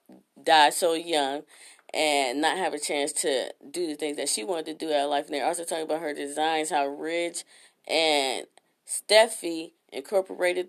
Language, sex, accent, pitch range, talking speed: English, female, American, 150-190 Hz, 175 wpm